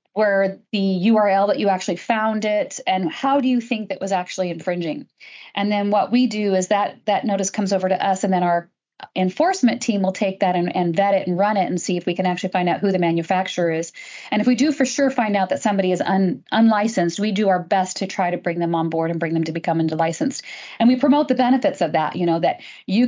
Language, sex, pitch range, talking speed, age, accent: English, female, 180-235 Hz, 255 wpm, 40-59, American